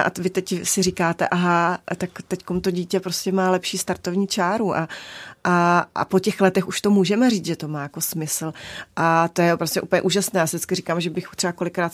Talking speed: 215 wpm